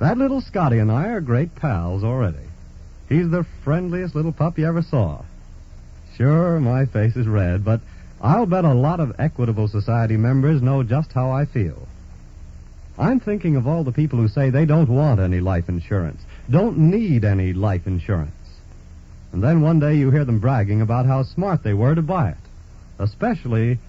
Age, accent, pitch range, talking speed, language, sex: 70-89, American, 95-155 Hz, 180 wpm, English, male